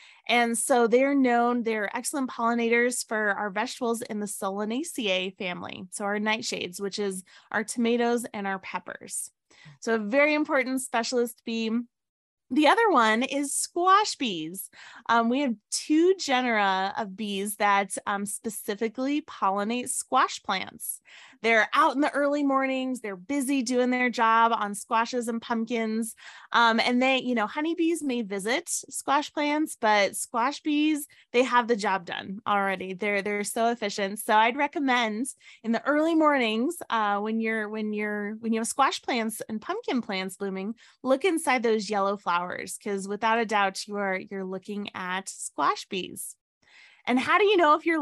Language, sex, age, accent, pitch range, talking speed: English, female, 20-39, American, 205-260 Hz, 160 wpm